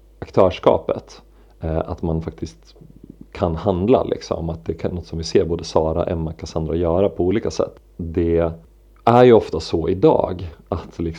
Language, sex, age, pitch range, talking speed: Swedish, male, 40-59, 80-90 Hz, 155 wpm